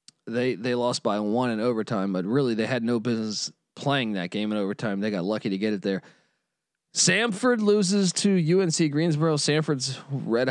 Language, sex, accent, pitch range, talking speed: English, male, American, 115-145 Hz, 185 wpm